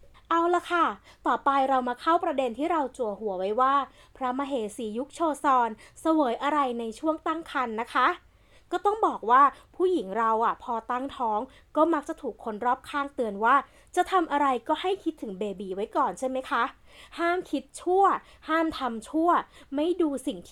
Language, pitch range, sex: Thai, 235-315 Hz, female